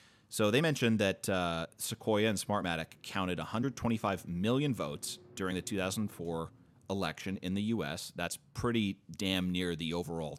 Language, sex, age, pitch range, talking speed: English, male, 30-49, 90-110 Hz, 145 wpm